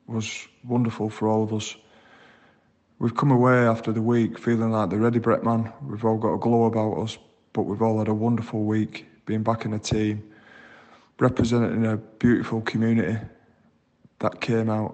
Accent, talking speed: British, 175 wpm